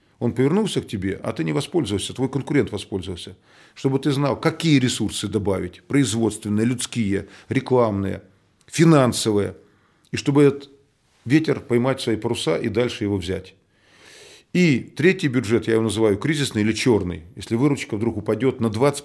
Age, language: 40-59, Russian